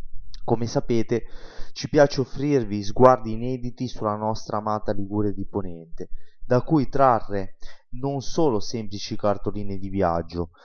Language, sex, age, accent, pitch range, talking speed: Italian, male, 20-39, native, 105-130 Hz, 125 wpm